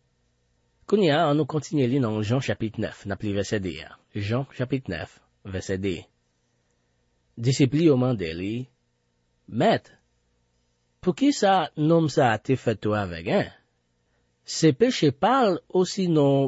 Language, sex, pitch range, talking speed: French, male, 90-130 Hz, 125 wpm